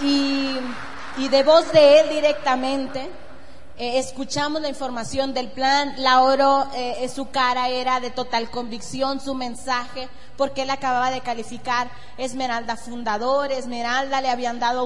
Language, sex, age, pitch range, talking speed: Spanish, female, 30-49, 245-275 Hz, 140 wpm